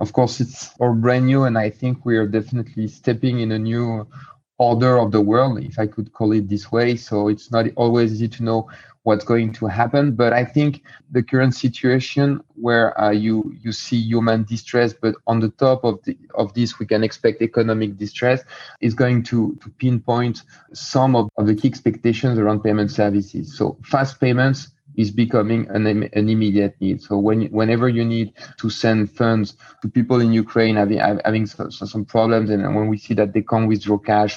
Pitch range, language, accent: 110-125 Hz, English, French